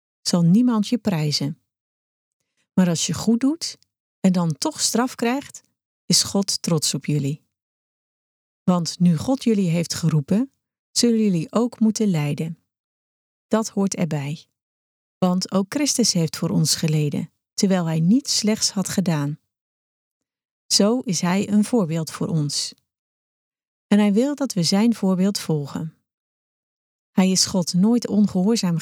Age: 40-59